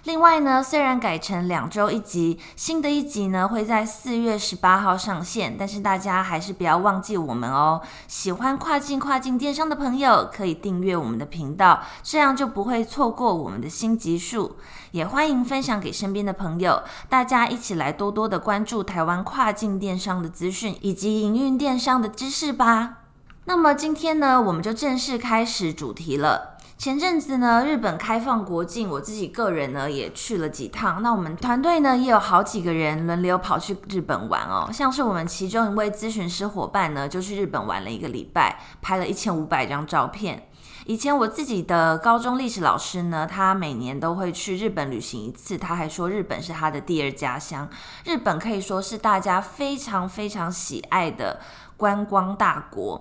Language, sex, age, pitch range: Chinese, female, 20-39, 175-245 Hz